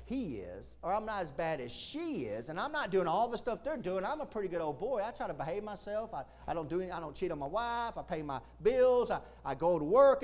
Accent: American